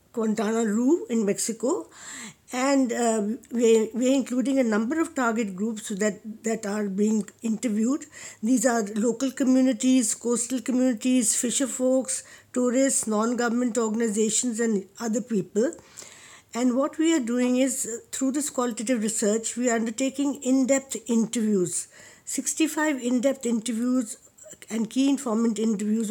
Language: English